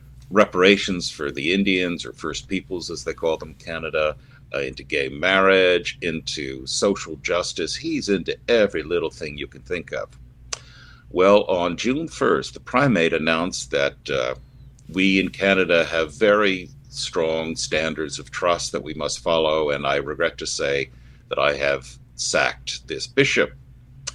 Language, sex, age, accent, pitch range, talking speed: English, male, 60-79, American, 80-130 Hz, 150 wpm